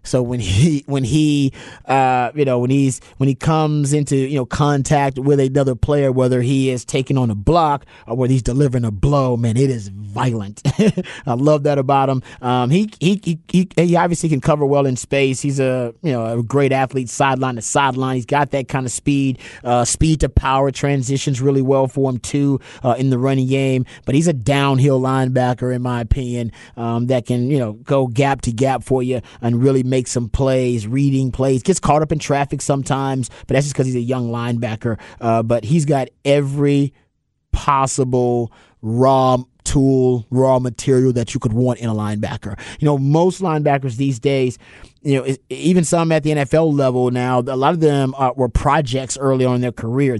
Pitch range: 125-140 Hz